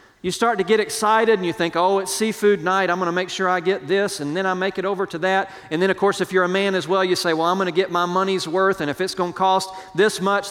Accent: American